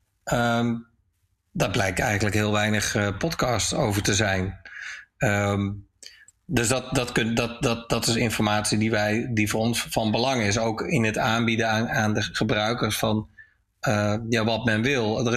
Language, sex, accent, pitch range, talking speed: Dutch, male, Dutch, 105-120 Hz, 170 wpm